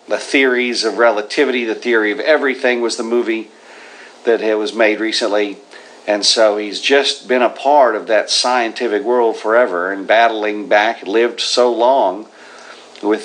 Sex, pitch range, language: male, 115-150 Hz, English